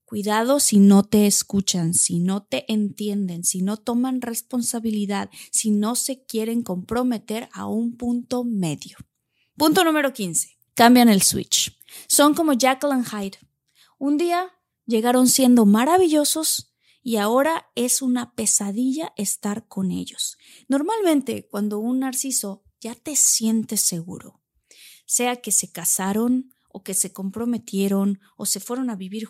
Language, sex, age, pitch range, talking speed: Spanish, female, 30-49, 200-265 Hz, 135 wpm